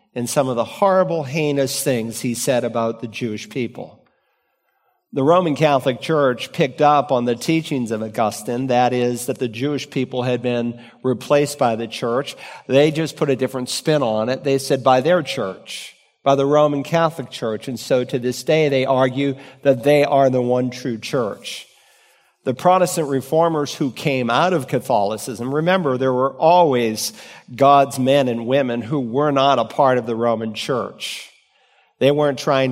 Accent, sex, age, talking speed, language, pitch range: American, male, 50-69, 175 wpm, English, 125-145 Hz